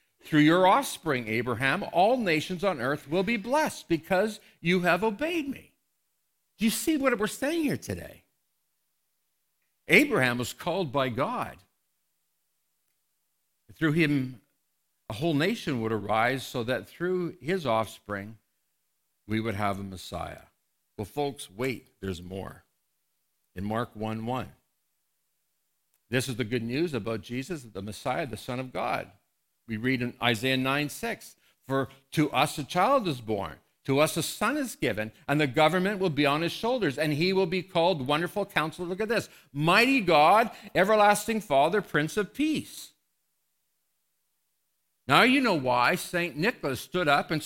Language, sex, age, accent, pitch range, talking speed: English, male, 60-79, American, 125-195 Hz, 150 wpm